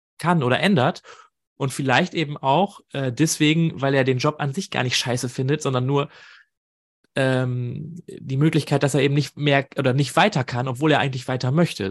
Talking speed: 190 wpm